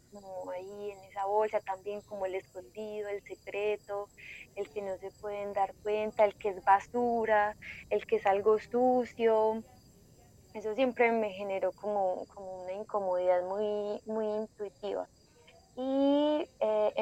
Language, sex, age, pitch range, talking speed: Spanish, female, 10-29, 195-220 Hz, 140 wpm